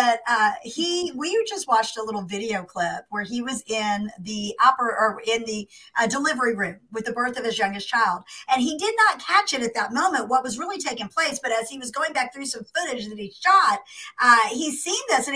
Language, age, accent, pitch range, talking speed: English, 50-69, American, 230-330 Hz, 235 wpm